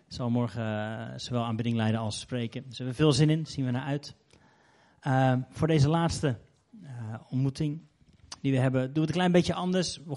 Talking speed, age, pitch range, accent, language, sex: 200 wpm, 30-49, 130-155 Hz, Dutch, Dutch, male